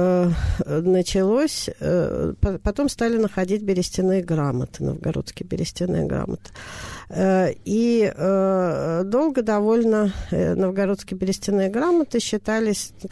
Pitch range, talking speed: 170-215 Hz, 75 wpm